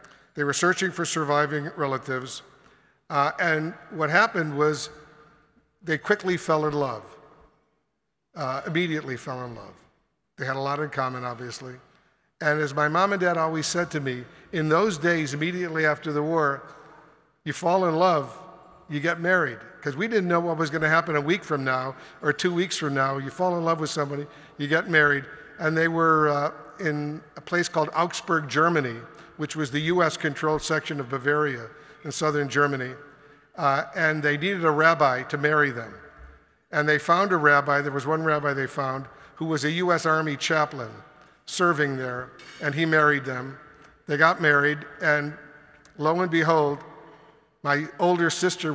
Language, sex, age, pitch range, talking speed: English, male, 50-69, 145-165 Hz, 175 wpm